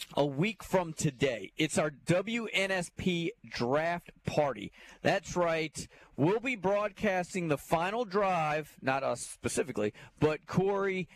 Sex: male